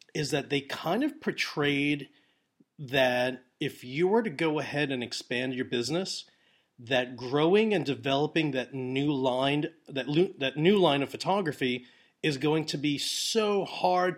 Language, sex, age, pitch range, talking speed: English, male, 30-49, 130-175 Hz, 140 wpm